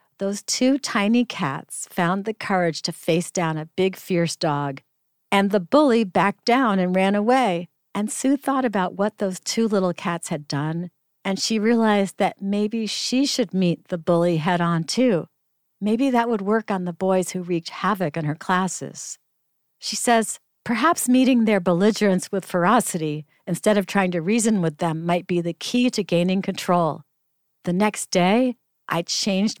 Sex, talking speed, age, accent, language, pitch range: female, 170 wpm, 50-69, American, English, 165-215 Hz